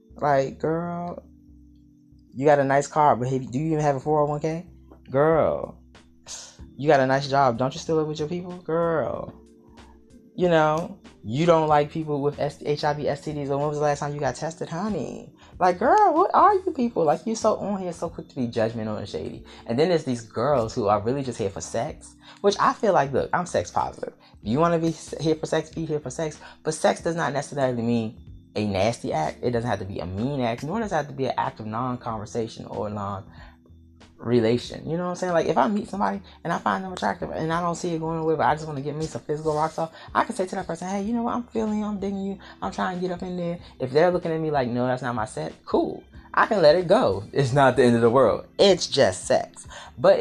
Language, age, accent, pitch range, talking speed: English, 20-39, American, 120-175 Hz, 250 wpm